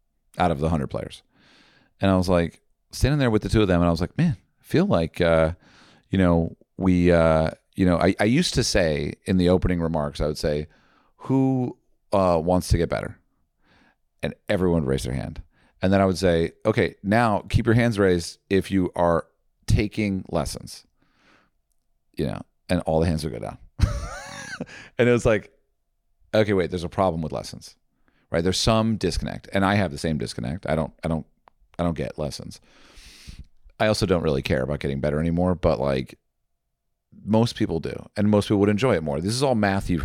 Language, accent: English, American